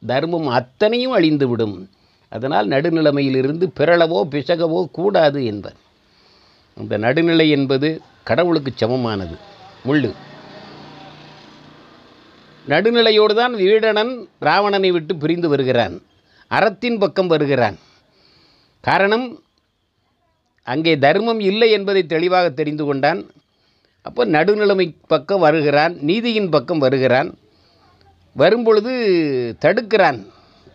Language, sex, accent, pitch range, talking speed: Tamil, male, native, 140-195 Hz, 80 wpm